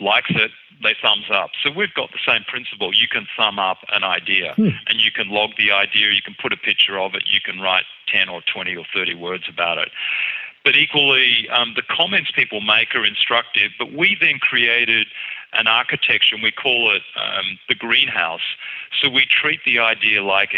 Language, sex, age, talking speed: English, male, 40-59, 200 wpm